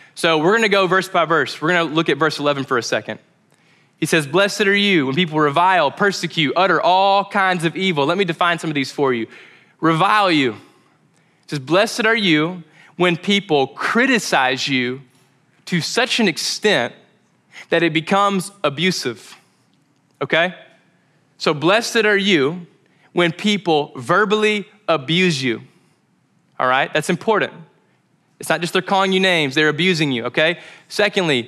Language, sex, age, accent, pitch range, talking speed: English, male, 20-39, American, 155-200 Hz, 160 wpm